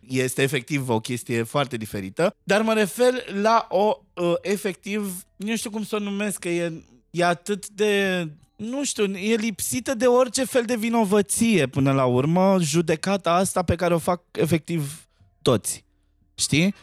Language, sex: Romanian, male